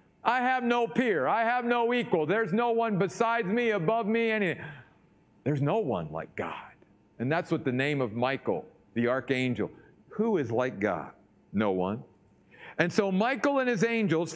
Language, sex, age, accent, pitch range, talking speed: English, male, 50-69, American, 155-220 Hz, 175 wpm